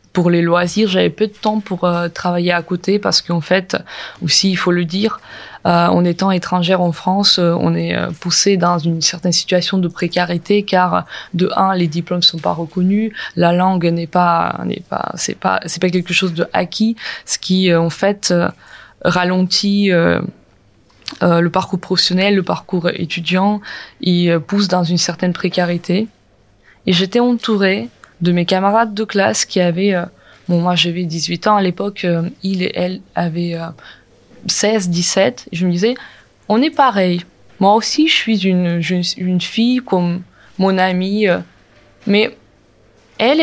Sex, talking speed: female, 175 wpm